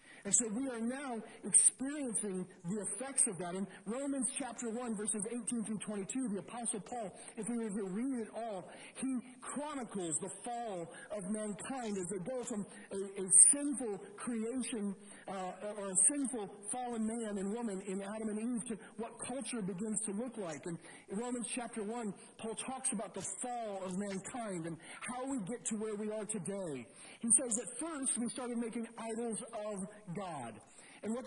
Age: 50-69